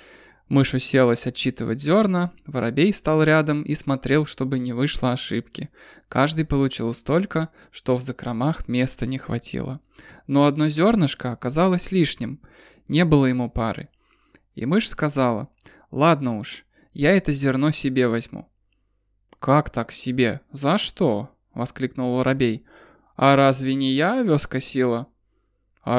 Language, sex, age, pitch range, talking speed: Russian, male, 20-39, 125-150 Hz, 130 wpm